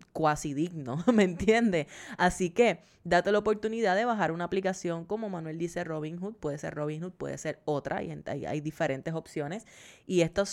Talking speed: 160 wpm